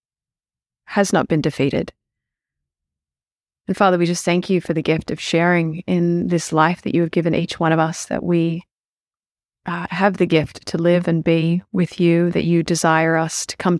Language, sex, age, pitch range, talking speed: English, female, 30-49, 155-180 Hz, 190 wpm